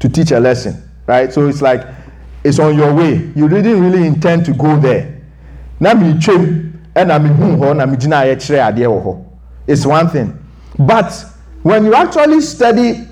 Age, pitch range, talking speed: 50-69, 140-200 Hz, 125 wpm